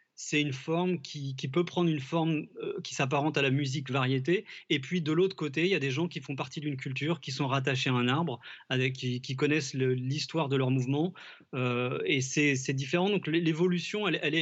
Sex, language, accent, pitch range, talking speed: male, French, French, 135-160 Hz, 230 wpm